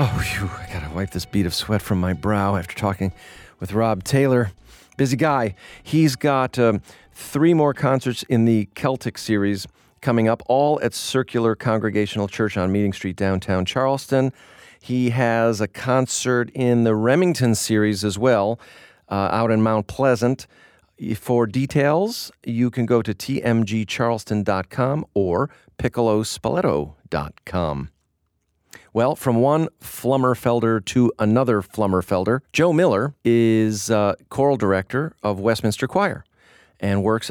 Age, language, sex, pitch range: 40-59, English, male, 95-125 Hz